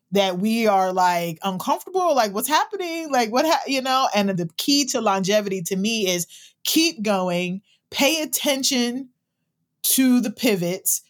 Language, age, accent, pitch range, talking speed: English, 30-49, American, 185-245 Hz, 150 wpm